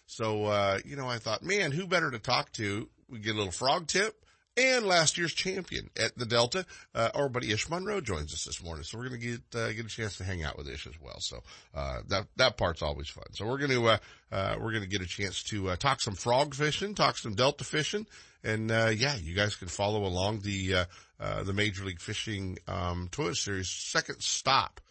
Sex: male